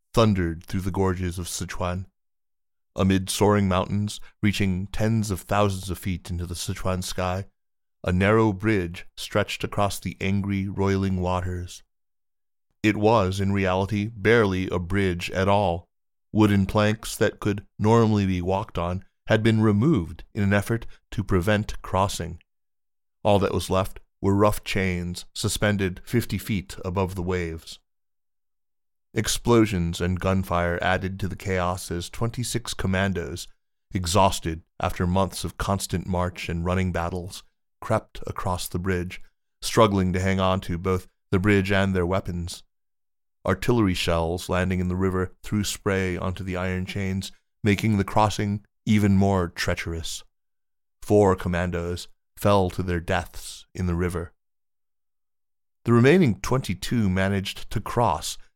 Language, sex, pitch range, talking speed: English, male, 90-100 Hz, 135 wpm